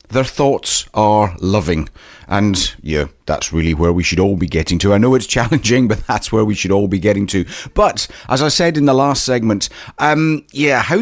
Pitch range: 90-125 Hz